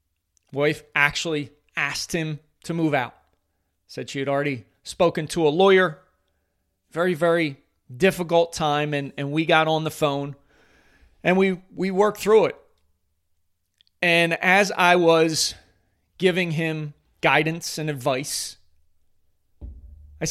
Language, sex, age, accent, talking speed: English, male, 30-49, American, 125 wpm